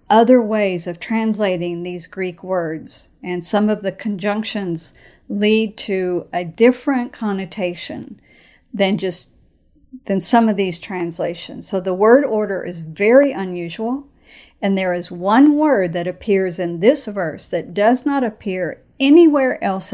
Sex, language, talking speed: female, English, 140 wpm